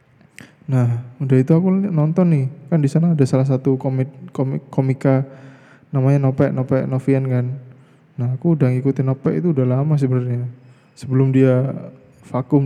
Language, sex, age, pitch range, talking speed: Indonesian, male, 20-39, 130-145 Hz, 145 wpm